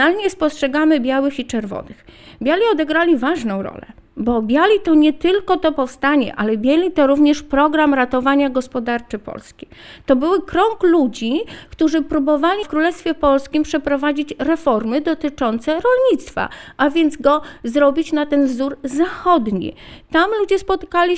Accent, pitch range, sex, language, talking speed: native, 255-315 Hz, female, Polish, 135 wpm